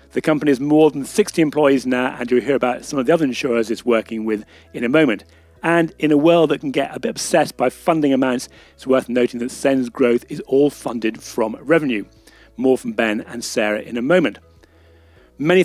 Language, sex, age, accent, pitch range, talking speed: English, male, 40-59, British, 120-150 Hz, 215 wpm